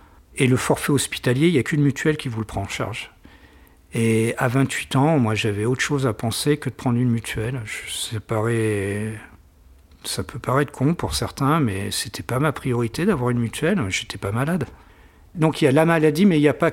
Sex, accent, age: male, French, 50-69